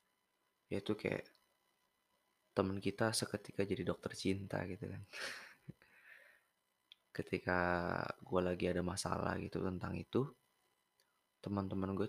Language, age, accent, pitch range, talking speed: Indonesian, 20-39, native, 90-105 Hz, 100 wpm